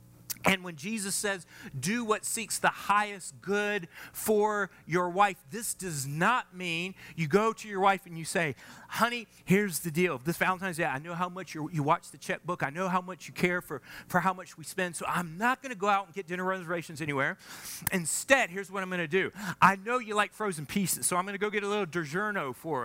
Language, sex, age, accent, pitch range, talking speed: English, male, 30-49, American, 150-210 Hz, 230 wpm